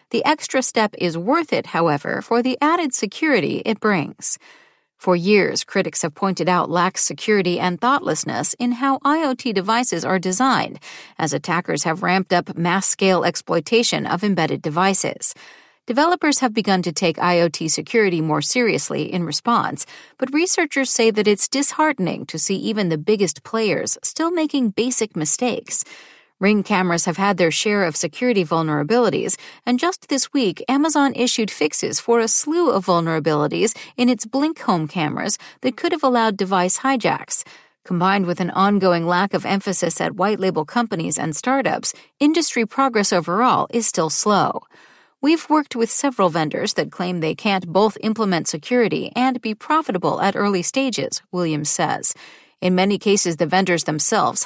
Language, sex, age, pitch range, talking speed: English, female, 40-59, 175-250 Hz, 155 wpm